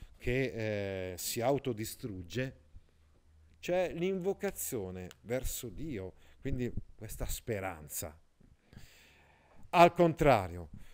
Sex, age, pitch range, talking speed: male, 50-69, 105-145 Hz, 70 wpm